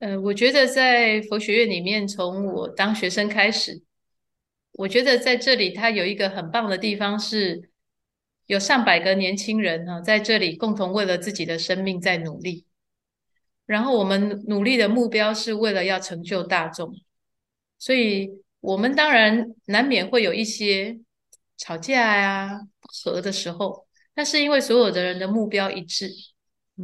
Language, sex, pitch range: Chinese, female, 190-230 Hz